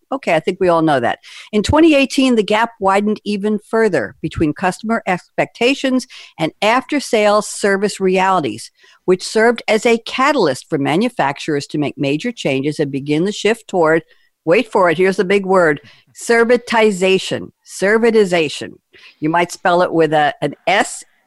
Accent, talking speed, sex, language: American, 155 wpm, female, English